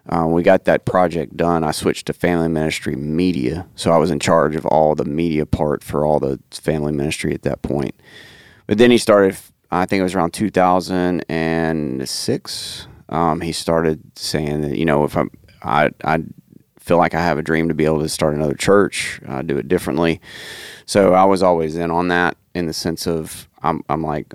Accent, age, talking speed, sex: American, 30-49, 200 wpm, male